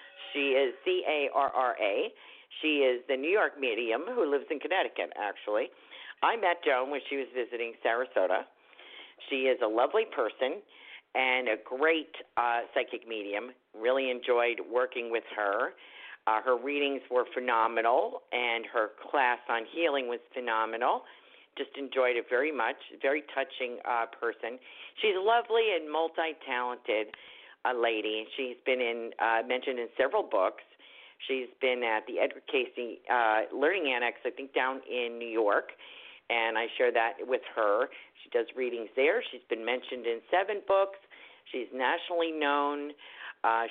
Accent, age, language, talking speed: American, 50-69, English, 155 wpm